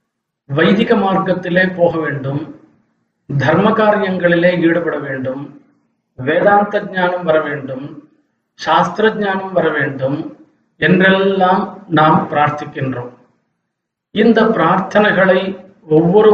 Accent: native